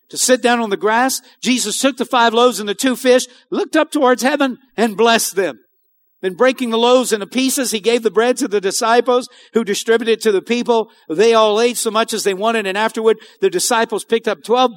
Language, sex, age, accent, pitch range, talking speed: English, male, 50-69, American, 220-260 Hz, 230 wpm